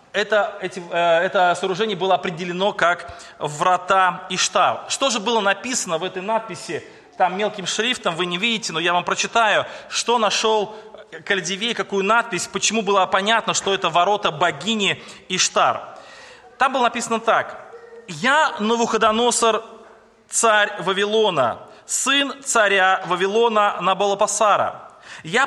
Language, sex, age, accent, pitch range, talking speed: Russian, male, 30-49, native, 190-230 Hz, 120 wpm